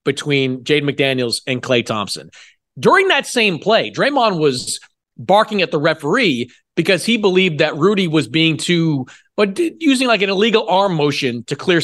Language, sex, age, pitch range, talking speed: English, male, 30-49, 145-195 Hz, 165 wpm